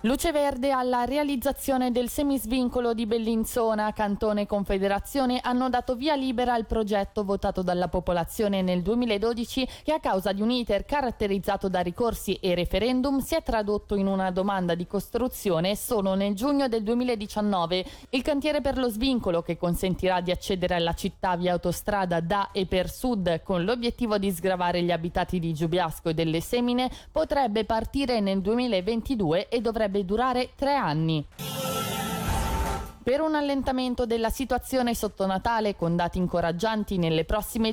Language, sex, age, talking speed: Italian, female, 20-39, 150 wpm